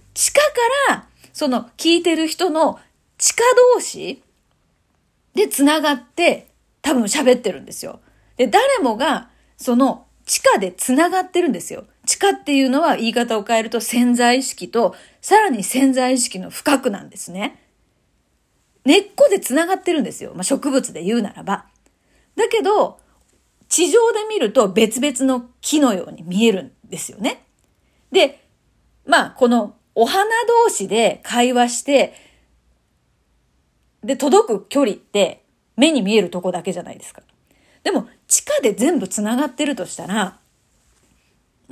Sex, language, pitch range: female, Japanese, 225-310 Hz